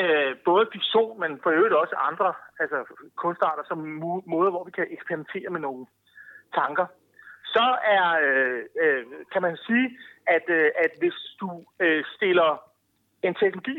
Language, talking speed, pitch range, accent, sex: Danish, 135 wpm, 180-250 Hz, native, male